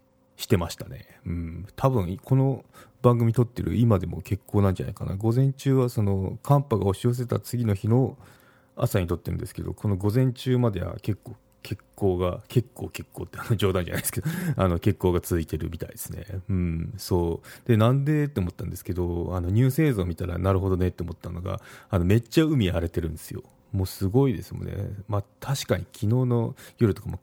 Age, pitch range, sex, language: 30-49, 90-120 Hz, male, Japanese